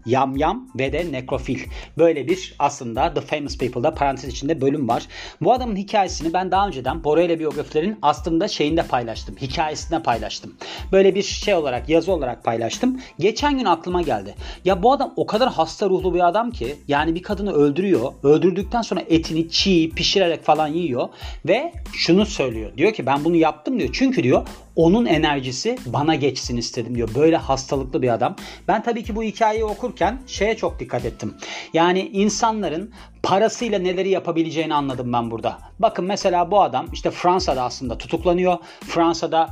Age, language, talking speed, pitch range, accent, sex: 40-59, Turkish, 165 wpm, 145-195 Hz, native, male